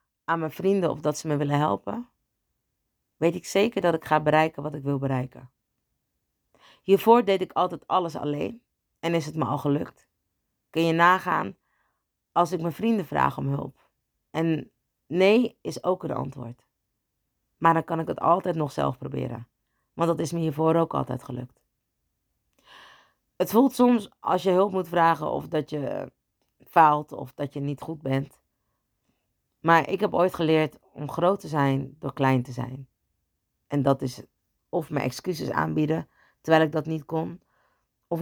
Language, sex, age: Dutch, female, 40-59